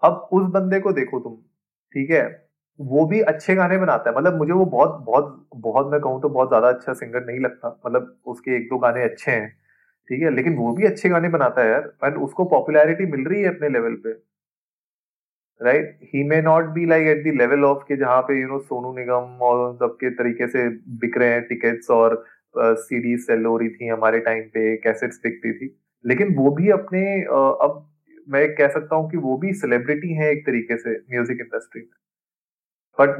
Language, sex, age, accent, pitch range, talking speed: Hindi, male, 30-49, native, 120-160 Hz, 170 wpm